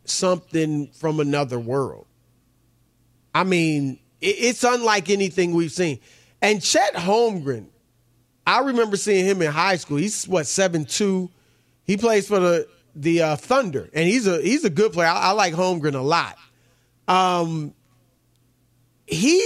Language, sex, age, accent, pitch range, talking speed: English, male, 30-49, American, 135-215 Hz, 140 wpm